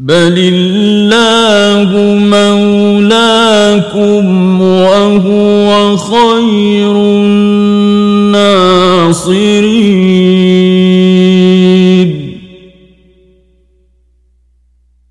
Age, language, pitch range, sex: 50-69, Persian, 185-205 Hz, male